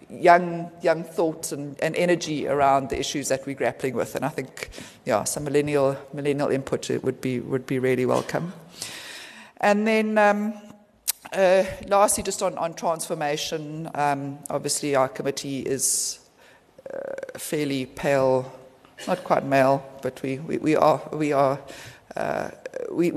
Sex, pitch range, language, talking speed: female, 135-175 Hz, English, 145 wpm